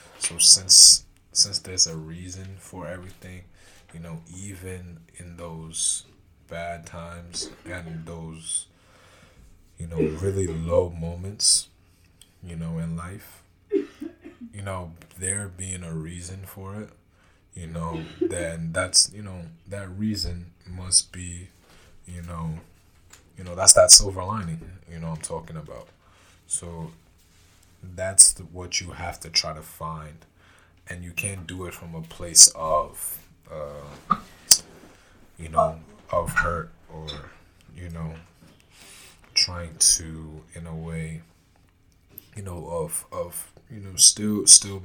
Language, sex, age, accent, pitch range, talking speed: English, male, 20-39, American, 80-90 Hz, 130 wpm